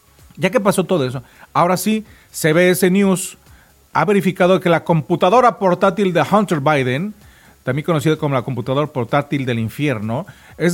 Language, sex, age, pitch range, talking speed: Spanish, male, 40-59, 145-185 Hz, 150 wpm